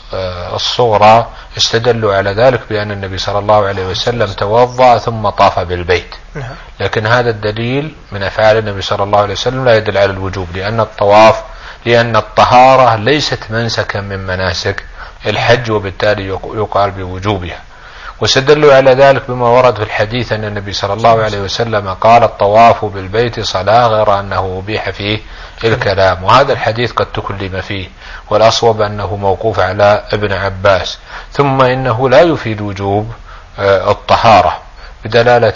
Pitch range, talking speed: 100-120 Hz, 135 wpm